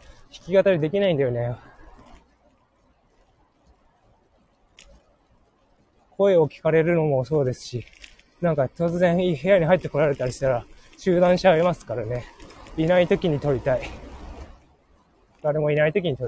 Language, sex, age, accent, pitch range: Japanese, male, 20-39, native, 105-170 Hz